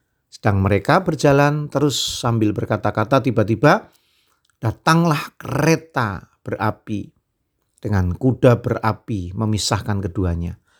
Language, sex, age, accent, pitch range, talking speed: Indonesian, male, 50-69, native, 100-145 Hz, 85 wpm